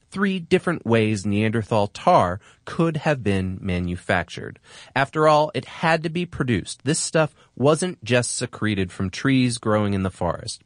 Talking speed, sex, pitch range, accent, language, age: 150 wpm, male, 105-160 Hz, American, English, 30-49